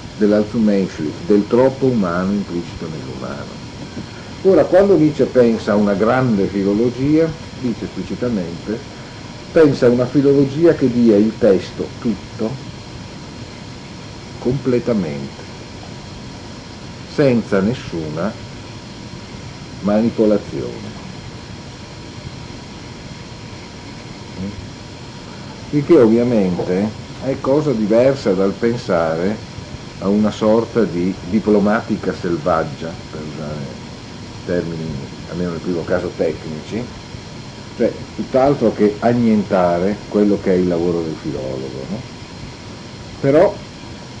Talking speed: 85 wpm